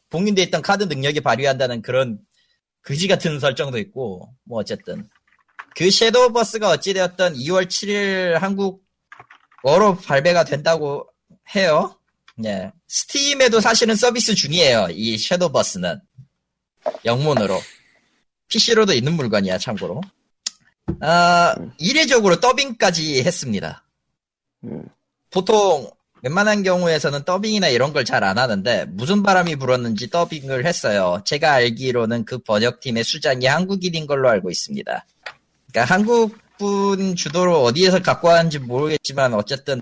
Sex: male